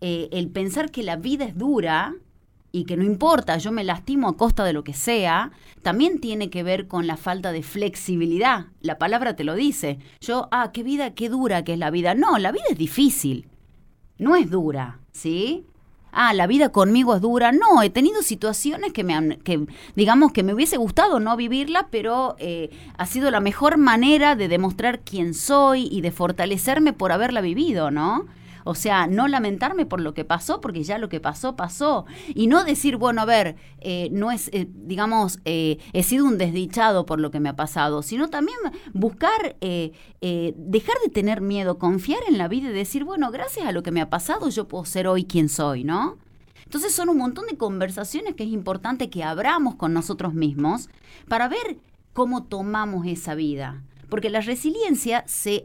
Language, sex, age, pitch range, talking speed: Spanish, female, 30-49, 170-260 Hz, 195 wpm